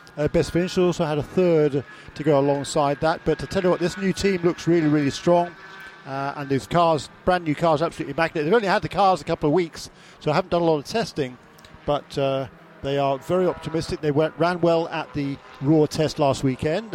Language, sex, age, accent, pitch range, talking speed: English, male, 50-69, British, 140-175 Hz, 230 wpm